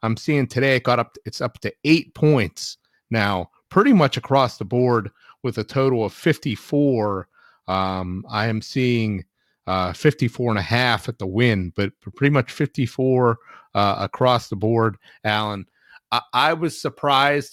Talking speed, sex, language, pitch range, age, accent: 160 wpm, male, English, 110-135 Hz, 30-49, American